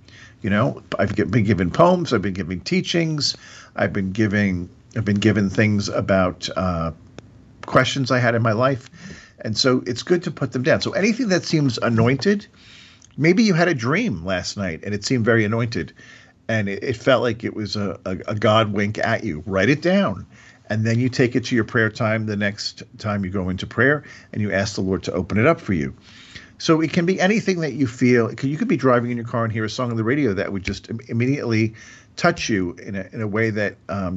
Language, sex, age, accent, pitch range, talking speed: English, male, 50-69, American, 105-135 Hz, 225 wpm